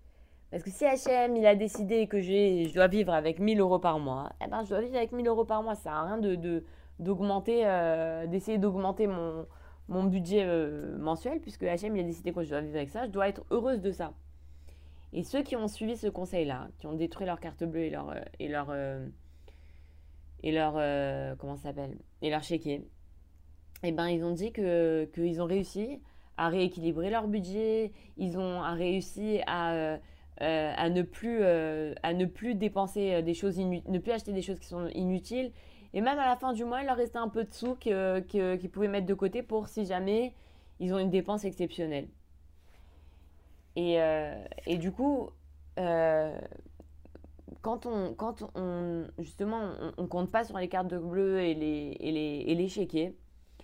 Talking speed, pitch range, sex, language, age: 195 wpm, 155-205 Hz, female, French, 20-39